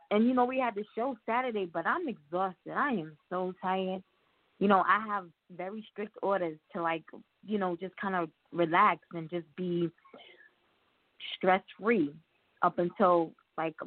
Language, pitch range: English, 170-220 Hz